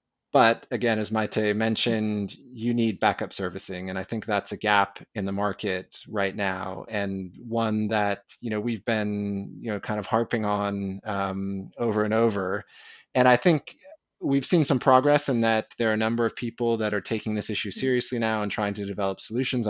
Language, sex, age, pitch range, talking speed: English, male, 30-49, 100-120 Hz, 195 wpm